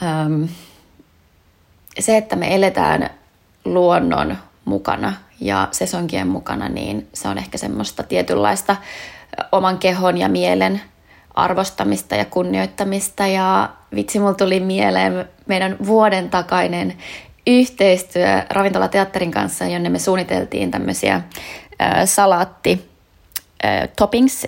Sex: female